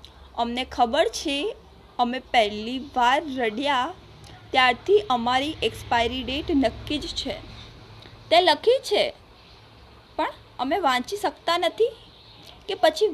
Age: 20-39